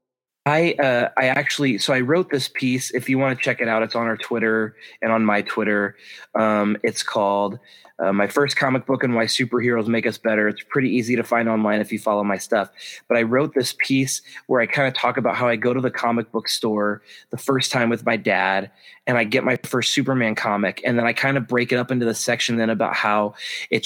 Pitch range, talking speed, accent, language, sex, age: 115-135 Hz, 245 wpm, American, English, male, 20-39